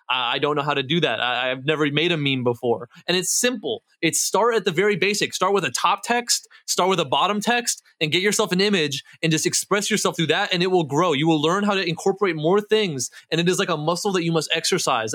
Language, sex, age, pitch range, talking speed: English, male, 20-39, 155-200 Hz, 260 wpm